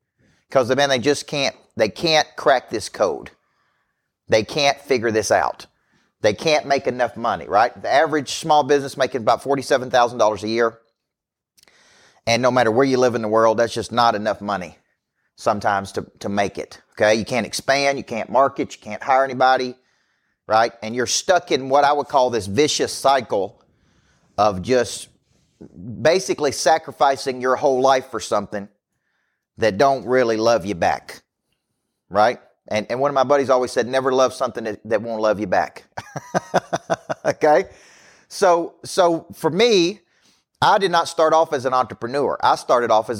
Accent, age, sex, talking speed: American, 40-59, male, 170 wpm